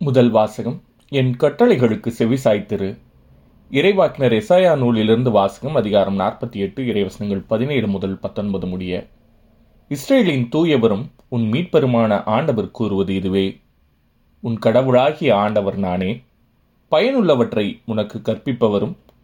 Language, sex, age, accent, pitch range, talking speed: Tamil, male, 30-49, native, 100-125 Hz, 95 wpm